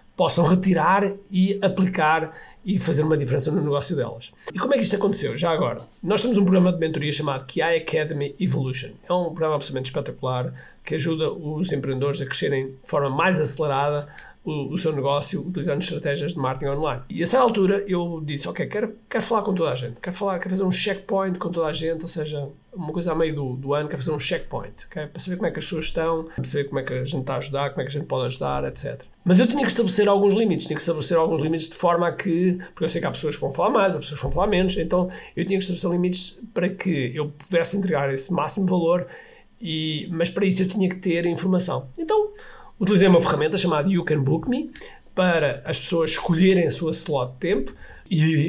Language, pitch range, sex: Portuguese, 150-190 Hz, male